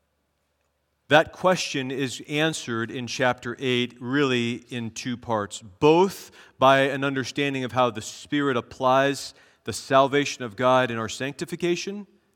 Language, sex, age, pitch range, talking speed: English, male, 40-59, 110-150 Hz, 130 wpm